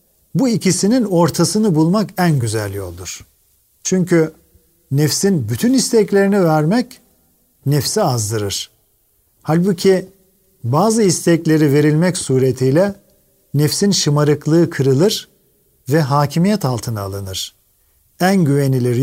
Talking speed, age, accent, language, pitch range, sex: 90 wpm, 50-69, native, Turkish, 140-185 Hz, male